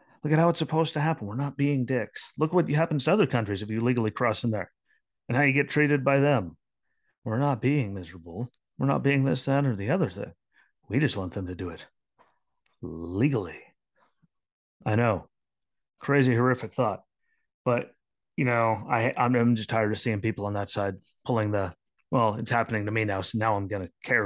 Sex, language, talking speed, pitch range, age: male, English, 205 wpm, 100-125 Hz, 30-49